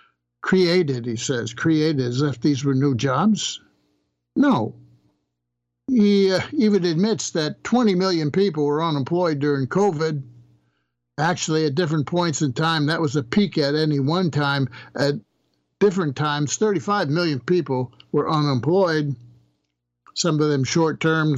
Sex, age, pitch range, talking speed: male, 60-79, 125-185 Hz, 140 wpm